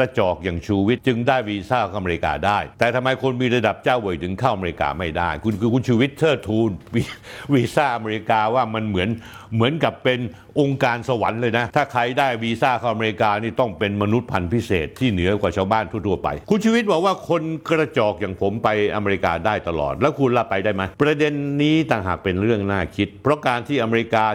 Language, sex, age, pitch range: Thai, male, 60-79, 100-130 Hz